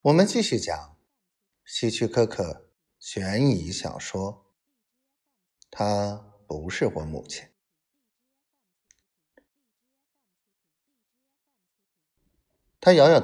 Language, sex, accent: Chinese, male, native